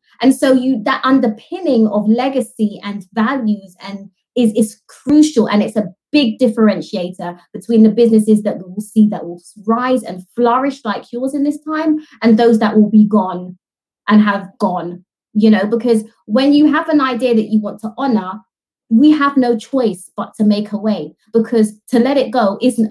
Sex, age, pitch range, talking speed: female, 20-39, 205-250 Hz, 190 wpm